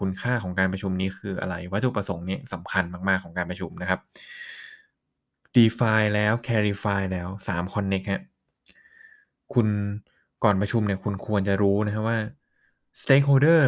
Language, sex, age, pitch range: Thai, male, 20-39, 95-115 Hz